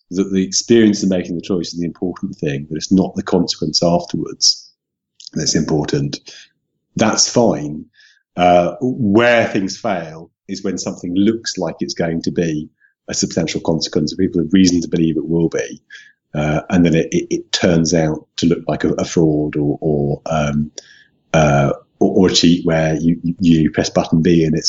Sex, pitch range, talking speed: male, 80-100 Hz, 180 wpm